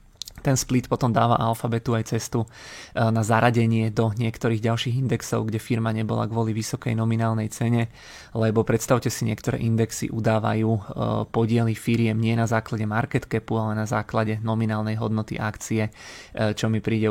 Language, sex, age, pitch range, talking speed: Czech, male, 20-39, 110-115 Hz, 145 wpm